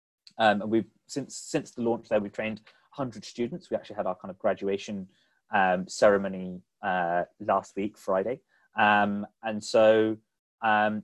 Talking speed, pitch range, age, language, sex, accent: 160 wpm, 105-120 Hz, 20-39, English, male, British